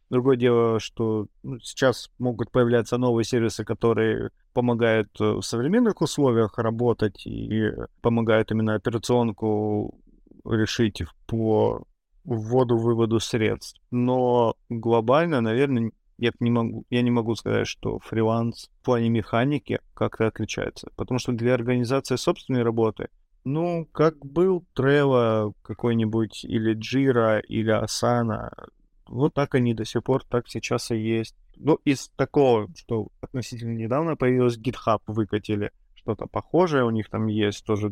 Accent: native